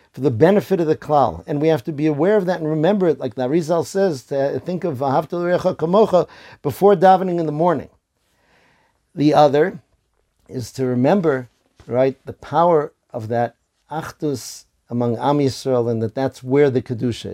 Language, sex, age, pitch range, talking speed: English, male, 50-69, 125-165 Hz, 175 wpm